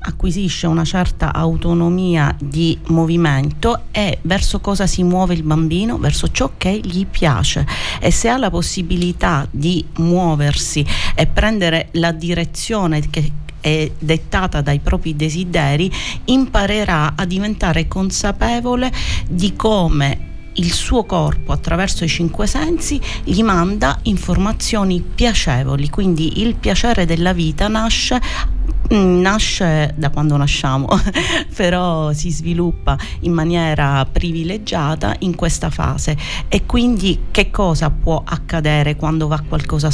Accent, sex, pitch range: native, female, 160-195 Hz